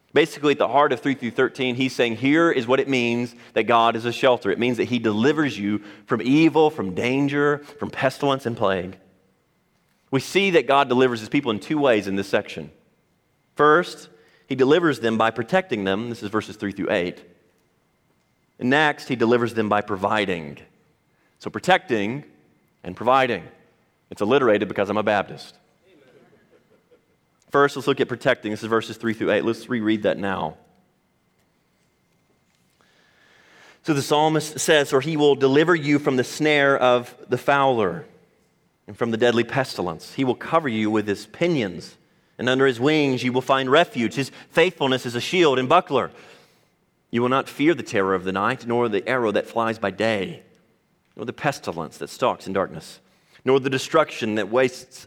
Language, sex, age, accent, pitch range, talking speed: English, male, 30-49, American, 110-140 Hz, 175 wpm